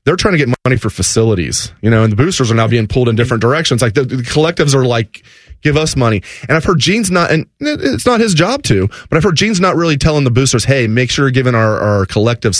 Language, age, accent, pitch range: English, 30-49, American, 100-135 Hz